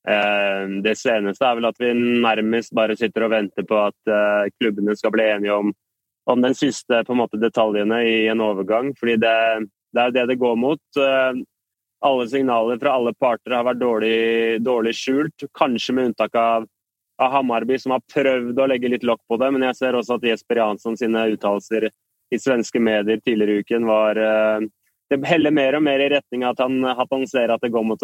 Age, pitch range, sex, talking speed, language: 20-39, 110-130 Hz, male, 195 wpm, Swedish